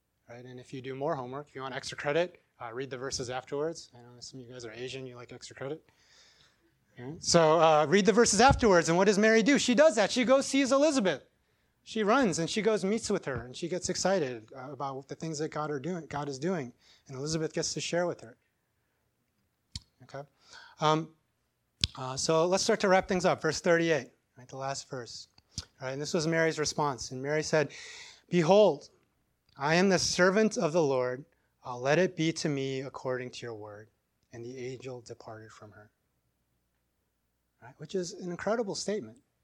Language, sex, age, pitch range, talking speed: English, male, 30-49, 125-170 Hz, 205 wpm